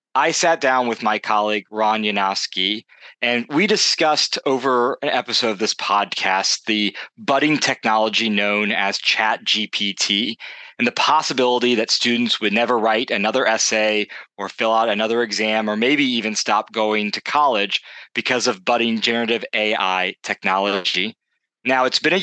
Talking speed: 150 wpm